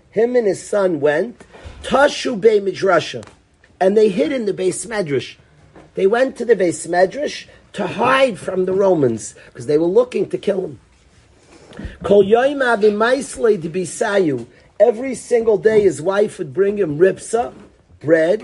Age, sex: 40-59, male